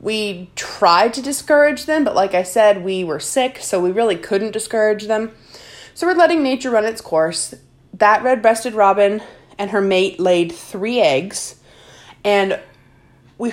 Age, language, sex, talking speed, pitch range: 20-39, English, female, 160 wpm, 200-275 Hz